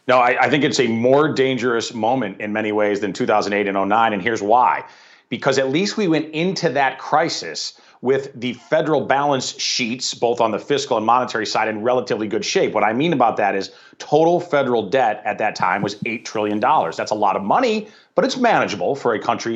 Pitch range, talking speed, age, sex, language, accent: 115-145 Hz, 210 wpm, 40-59, male, English, American